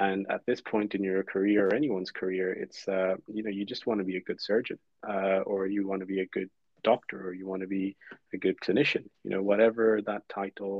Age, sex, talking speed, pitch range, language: 30-49, male, 245 wpm, 100-115 Hz, English